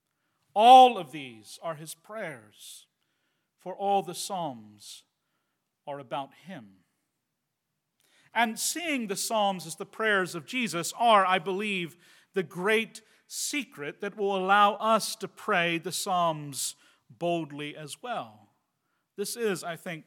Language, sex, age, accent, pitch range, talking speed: English, male, 40-59, American, 160-215 Hz, 130 wpm